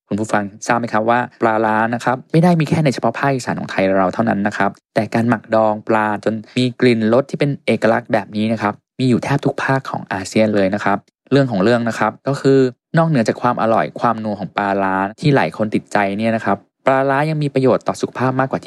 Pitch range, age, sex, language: 105-135 Hz, 20-39, male, Thai